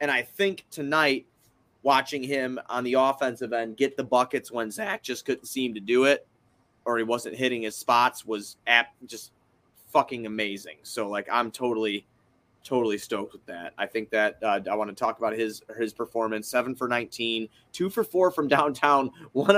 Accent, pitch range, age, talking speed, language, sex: American, 115-140 Hz, 30-49, 185 wpm, English, male